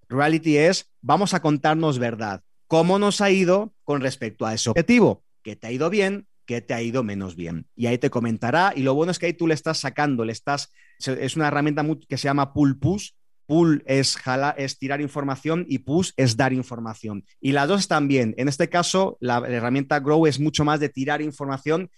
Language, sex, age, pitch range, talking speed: Spanish, male, 30-49, 130-170 Hz, 210 wpm